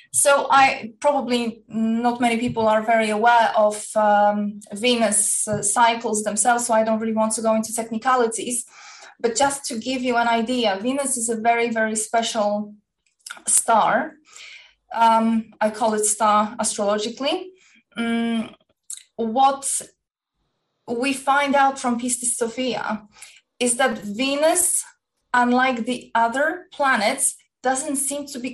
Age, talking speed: 20-39, 130 wpm